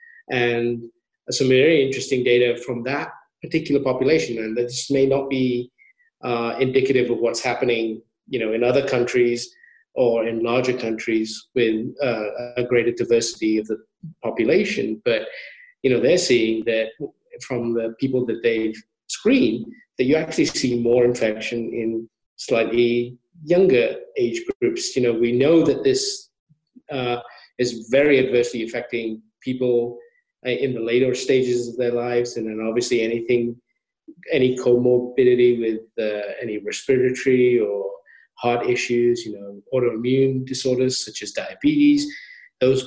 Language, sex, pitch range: English, male, 120-140 Hz